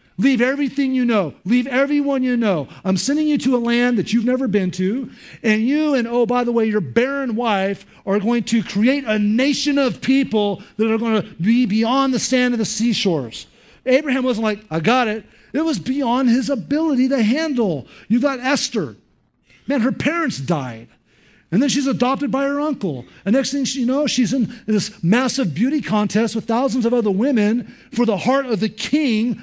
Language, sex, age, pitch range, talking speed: English, male, 50-69, 210-270 Hz, 200 wpm